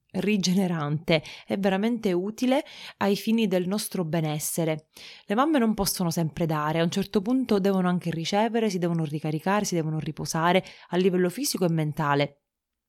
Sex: female